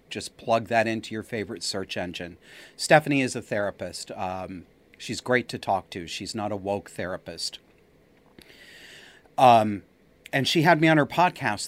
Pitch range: 105-130 Hz